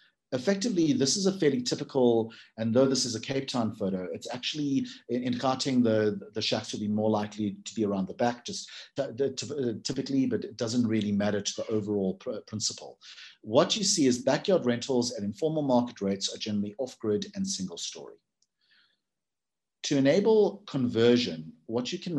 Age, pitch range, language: 50-69, 110-145 Hz, English